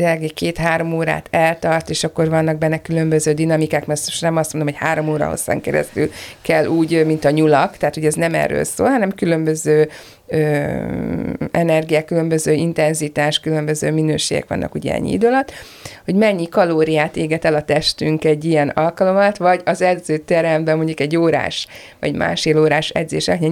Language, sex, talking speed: Hungarian, female, 165 wpm